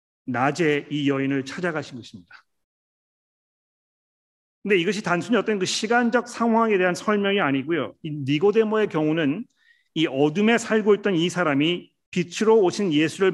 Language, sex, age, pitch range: Korean, male, 40-59, 140-185 Hz